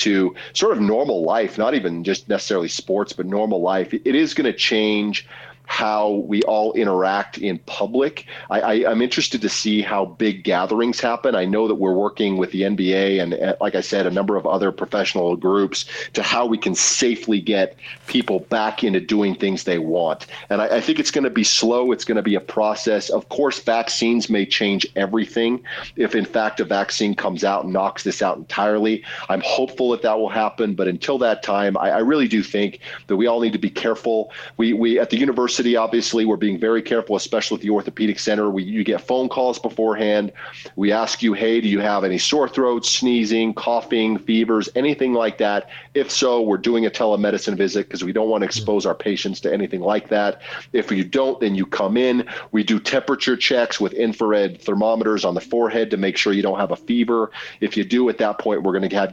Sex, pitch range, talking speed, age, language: male, 100-115 Hz, 215 wpm, 40-59, English